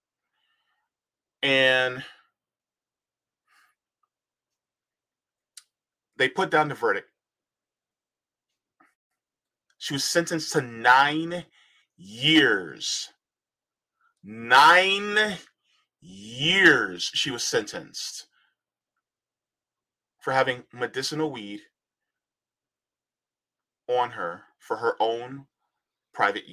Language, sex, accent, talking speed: English, male, American, 60 wpm